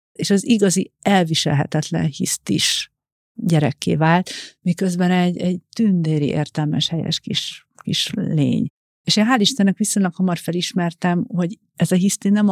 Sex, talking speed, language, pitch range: female, 135 wpm, Hungarian, 160-200 Hz